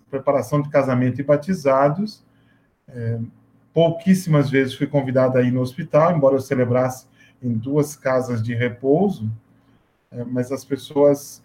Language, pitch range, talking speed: Portuguese, 130-155 Hz, 130 wpm